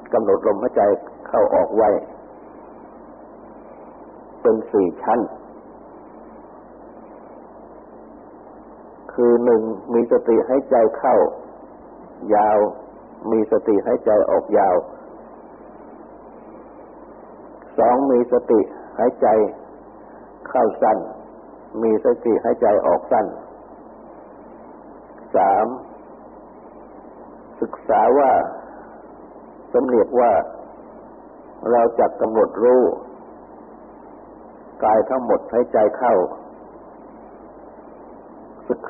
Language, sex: Thai, male